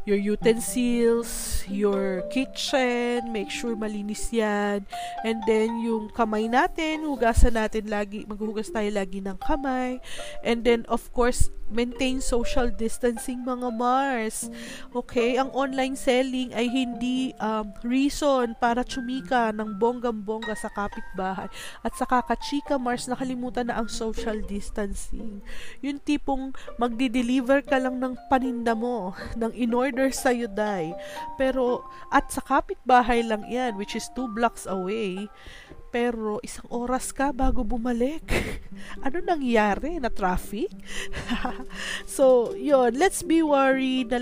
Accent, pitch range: native, 205-255 Hz